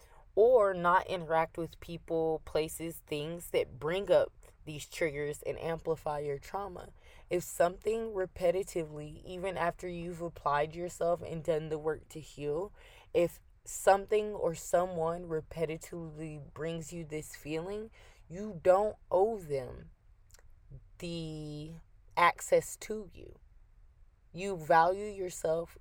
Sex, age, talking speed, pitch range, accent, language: female, 20-39, 115 wpm, 150-180 Hz, American, English